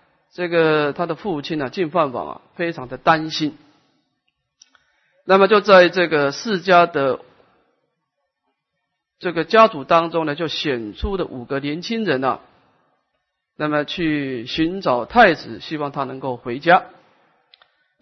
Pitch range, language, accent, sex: 140-185 Hz, Chinese, native, male